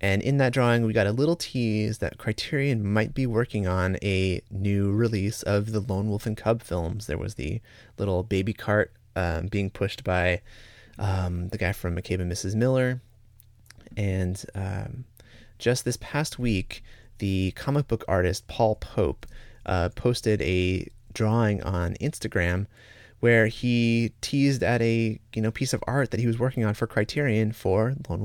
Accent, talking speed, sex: American, 170 wpm, male